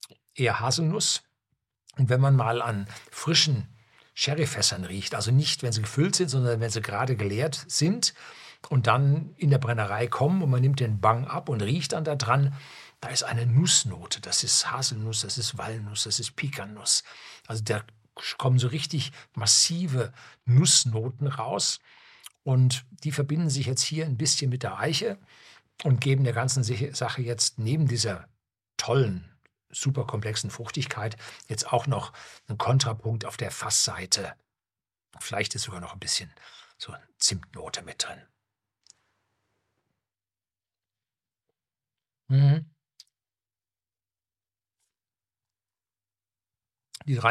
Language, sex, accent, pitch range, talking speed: German, male, German, 105-135 Hz, 130 wpm